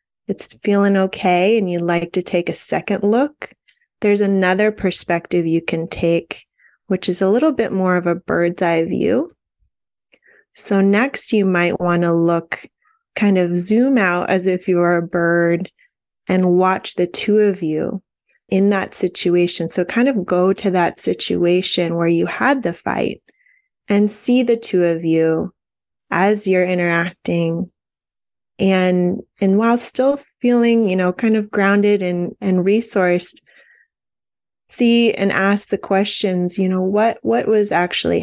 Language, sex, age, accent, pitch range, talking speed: English, female, 20-39, American, 175-210 Hz, 155 wpm